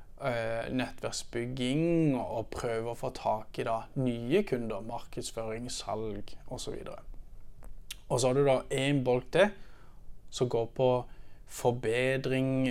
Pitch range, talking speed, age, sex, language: 115-135 Hz, 125 wpm, 20-39, male, Danish